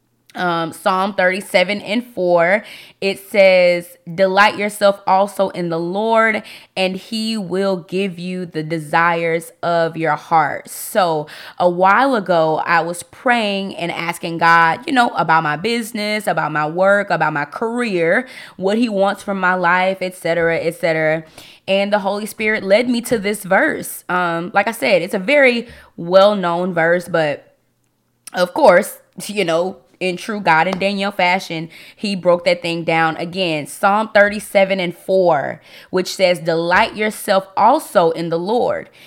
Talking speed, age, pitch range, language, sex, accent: 155 wpm, 20-39, 165-205 Hz, English, female, American